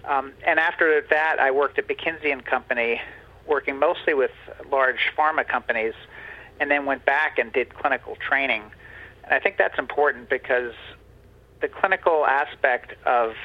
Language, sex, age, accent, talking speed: English, male, 50-69, American, 145 wpm